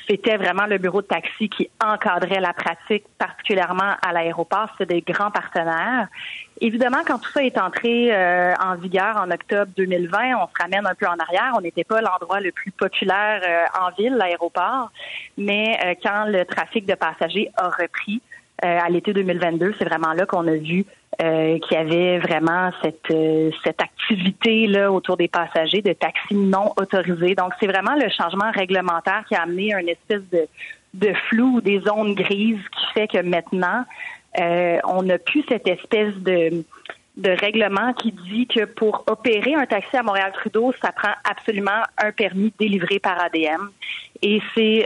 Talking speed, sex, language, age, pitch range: 170 wpm, female, French, 30-49, 175-215 Hz